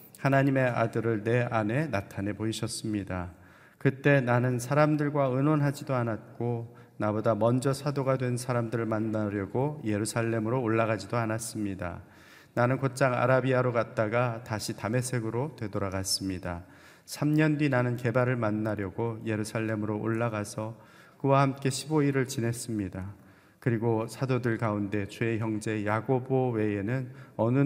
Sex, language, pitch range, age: male, Korean, 105-130 Hz, 30-49